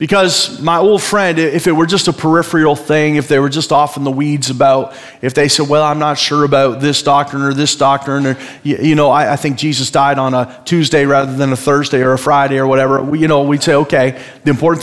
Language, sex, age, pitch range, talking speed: English, male, 30-49, 140-160 Hz, 245 wpm